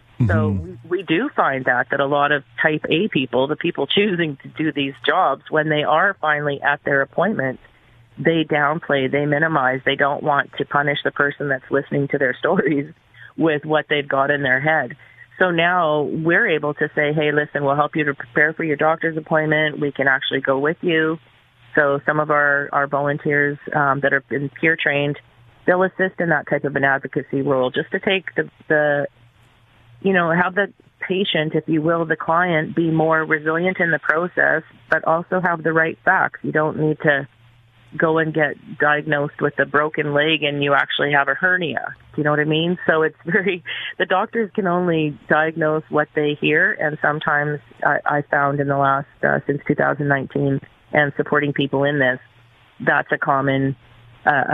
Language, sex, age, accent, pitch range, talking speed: English, female, 30-49, American, 135-160 Hz, 195 wpm